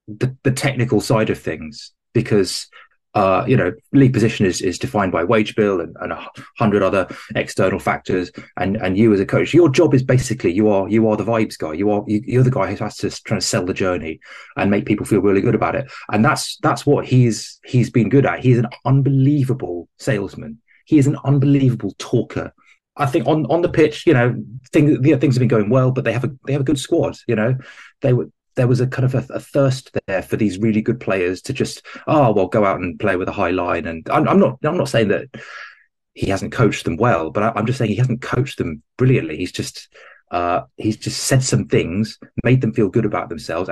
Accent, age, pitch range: British, 20-39, 105-135 Hz